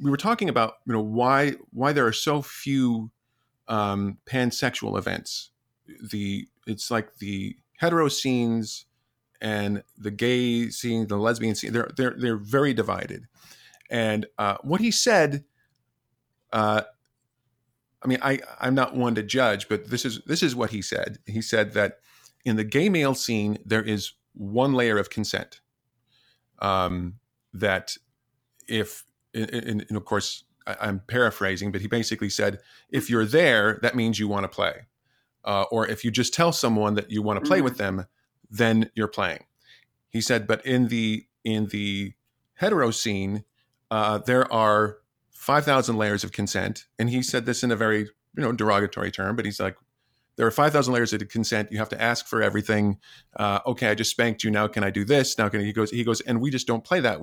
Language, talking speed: English, 180 wpm